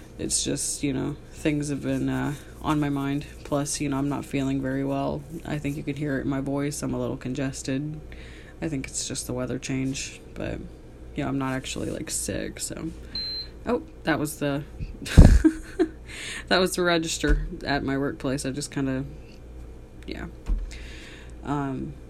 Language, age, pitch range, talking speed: English, 20-39, 125-160 Hz, 175 wpm